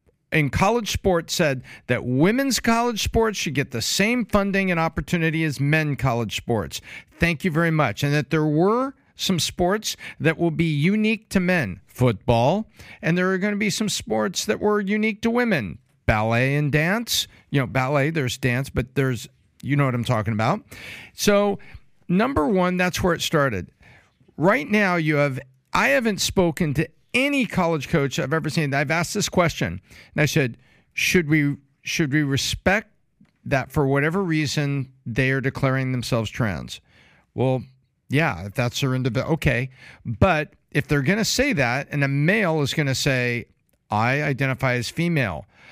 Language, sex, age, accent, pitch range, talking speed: English, male, 50-69, American, 130-180 Hz, 175 wpm